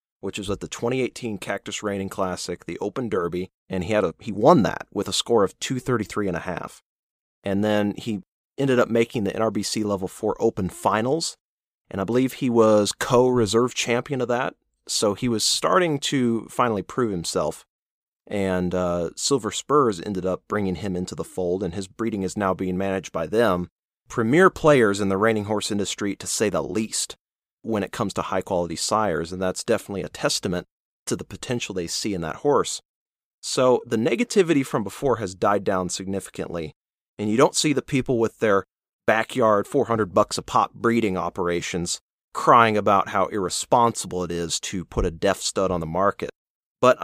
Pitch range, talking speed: 95-115 Hz, 185 wpm